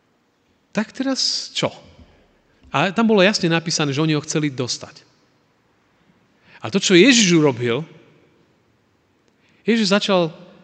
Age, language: 40-59, Slovak